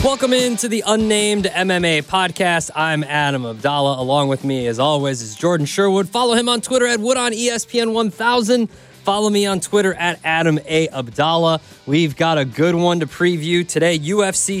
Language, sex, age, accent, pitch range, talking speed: English, male, 20-39, American, 145-190 Hz, 175 wpm